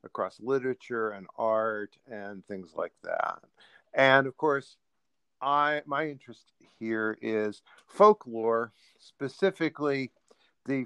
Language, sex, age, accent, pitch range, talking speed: English, male, 50-69, American, 110-135 Hz, 105 wpm